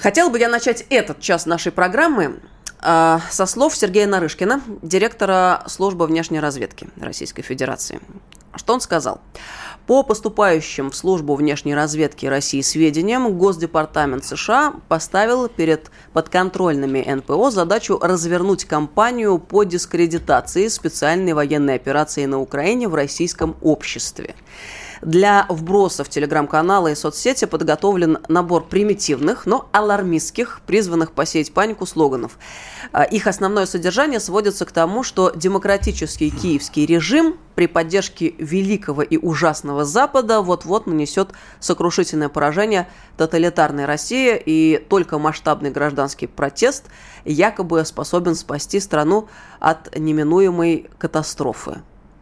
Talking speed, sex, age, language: 110 wpm, female, 20-39, Russian